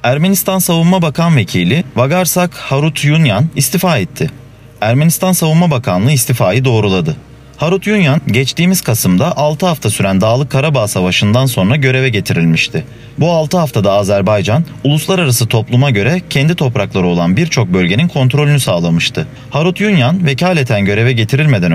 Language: Turkish